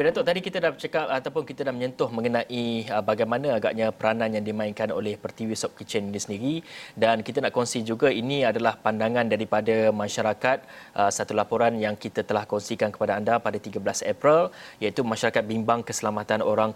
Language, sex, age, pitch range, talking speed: Malay, male, 30-49, 110-130 Hz, 170 wpm